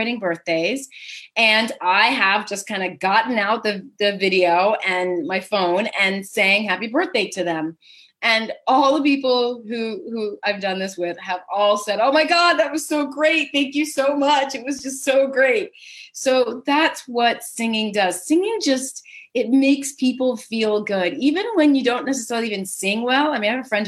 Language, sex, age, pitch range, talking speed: English, female, 30-49, 200-270 Hz, 190 wpm